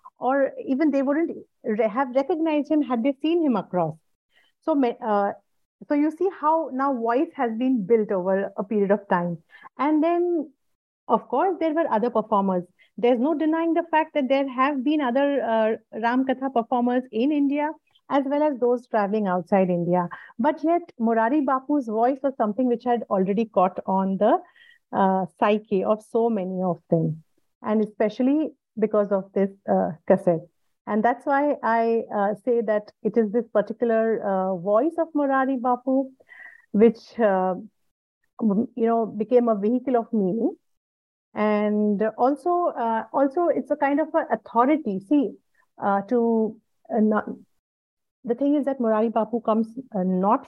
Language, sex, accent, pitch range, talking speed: English, female, Indian, 210-275 Hz, 160 wpm